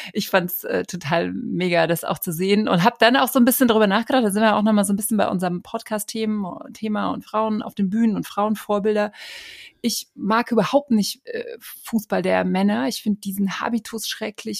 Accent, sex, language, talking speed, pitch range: German, female, German, 210 wpm, 200-245 Hz